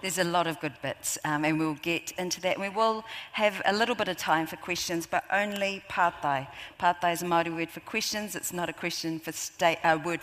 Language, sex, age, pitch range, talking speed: English, female, 50-69, 160-195 Hz, 240 wpm